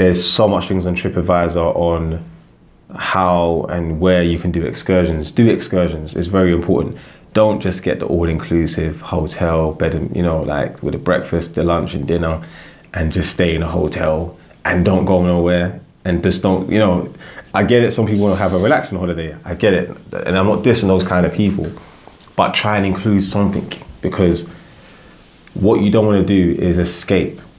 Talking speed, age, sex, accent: 190 wpm, 20-39, male, British